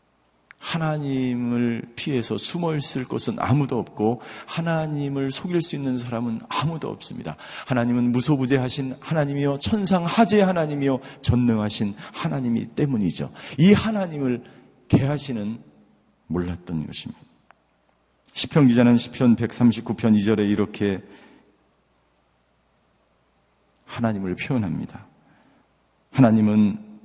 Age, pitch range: 40-59, 100-135 Hz